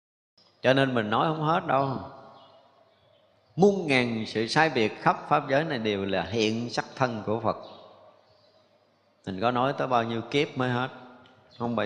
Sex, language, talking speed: male, Vietnamese, 170 wpm